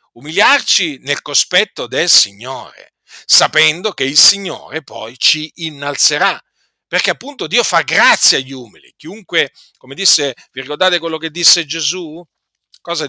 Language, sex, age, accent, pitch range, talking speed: Italian, male, 50-69, native, 125-200 Hz, 135 wpm